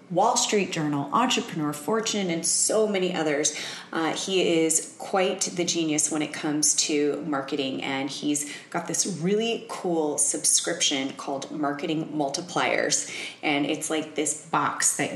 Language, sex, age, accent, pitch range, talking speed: English, female, 30-49, American, 145-165 Hz, 145 wpm